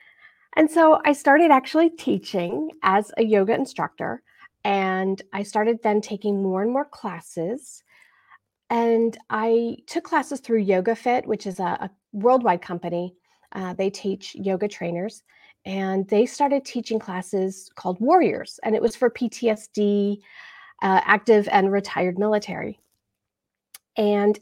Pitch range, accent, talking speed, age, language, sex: 195-240 Hz, American, 135 wpm, 40-59, English, female